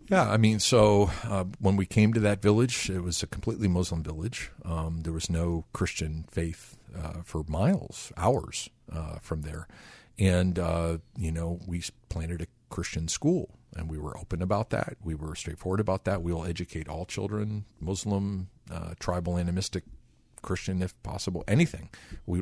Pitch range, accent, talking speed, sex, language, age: 80-105 Hz, American, 170 wpm, male, English, 50-69